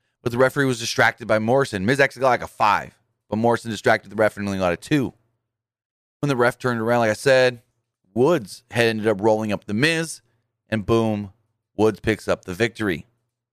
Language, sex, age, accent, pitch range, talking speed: English, male, 30-49, American, 110-130 Hz, 205 wpm